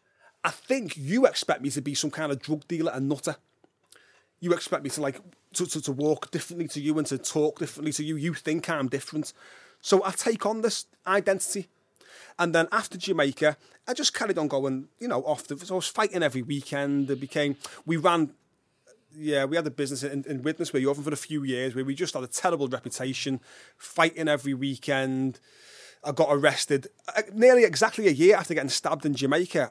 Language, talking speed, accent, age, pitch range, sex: English, 205 wpm, British, 30-49, 145-200 Hz, male